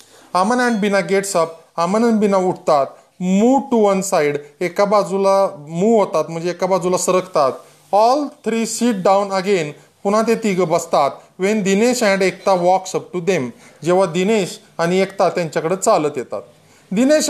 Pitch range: 180-225 Hz